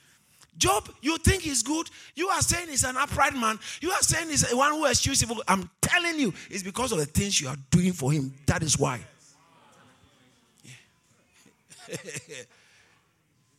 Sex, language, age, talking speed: male, English, 50-69, 165 wpm